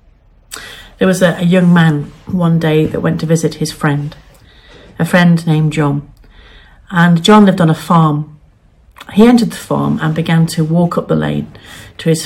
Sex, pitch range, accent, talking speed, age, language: female, 150-195 Hz, British, 175 wpm, 50-69, English